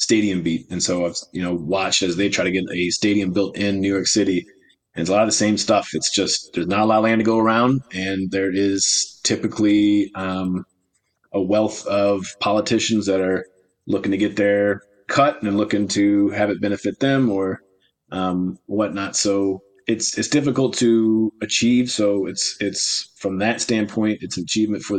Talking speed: 190 wpm